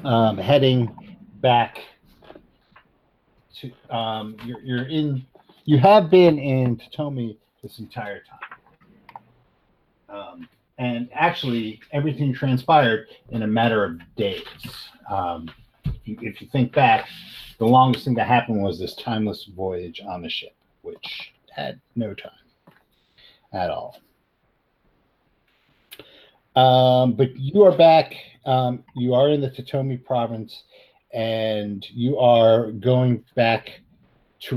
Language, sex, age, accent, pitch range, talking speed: English, male, 50-69, American, 110-140 Hz, 120 wpm